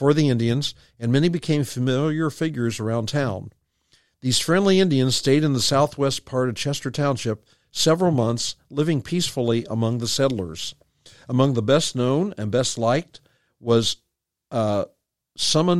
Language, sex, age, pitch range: English, male, 50-69, 115-145 Hz